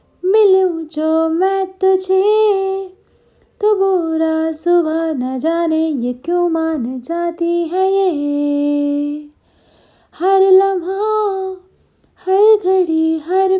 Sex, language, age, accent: female, Hindi, 30-49, native